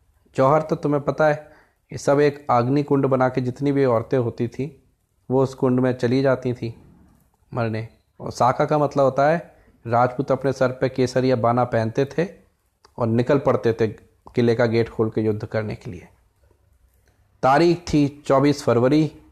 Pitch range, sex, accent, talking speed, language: 115-145 Hz, male, native, 175 wpm, Hindi